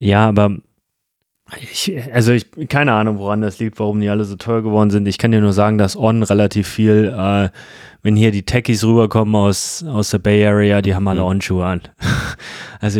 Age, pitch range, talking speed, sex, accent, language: 20-39, 95-110 Hz, 200 wpm, male, German, German